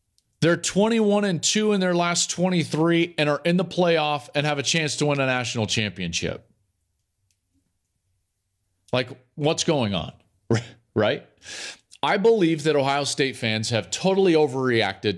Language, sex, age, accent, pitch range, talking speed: English, male, 40-59, American, 105-155 Hz, 140 wpm